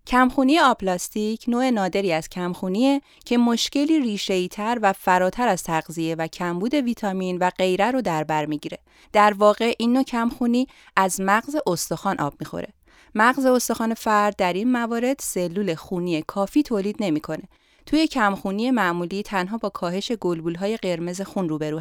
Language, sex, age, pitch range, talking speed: Persian, female, 30-49, 180-245 Hz, 150 wpm